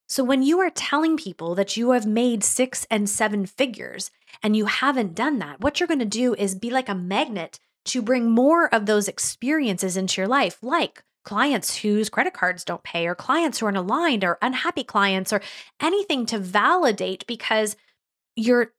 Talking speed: 190 wpm